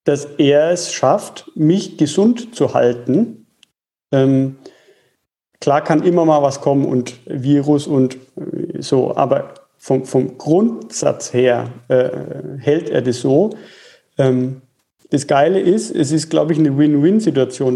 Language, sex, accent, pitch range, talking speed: German, male, German, 135-160 Hz, 130 wpm